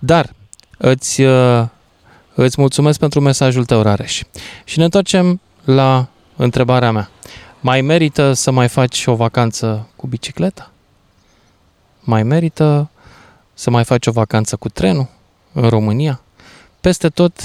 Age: 20-39